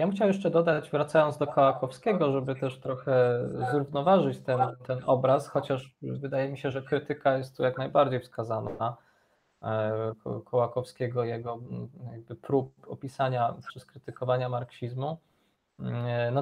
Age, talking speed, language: 20-39, 125 wpm, Polish